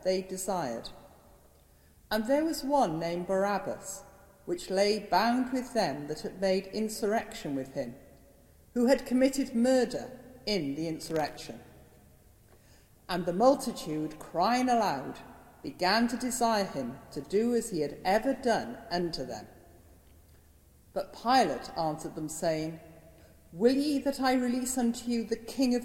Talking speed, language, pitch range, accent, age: 135 wpm, English, 145-240 Hz, British, 50-69